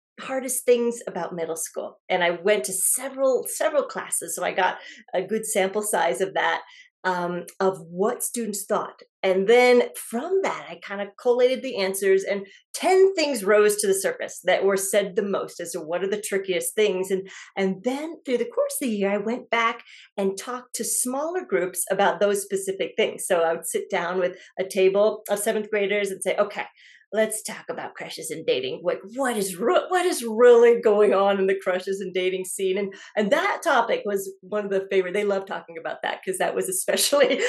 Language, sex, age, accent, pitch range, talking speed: English, female, 40-59, American, 195-270 Hz, 210 wpm